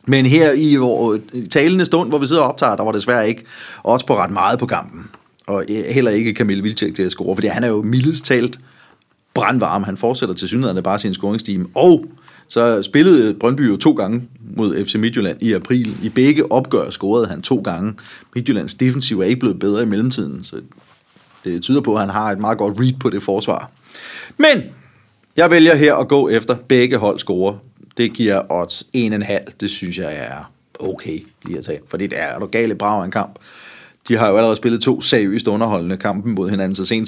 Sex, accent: male, native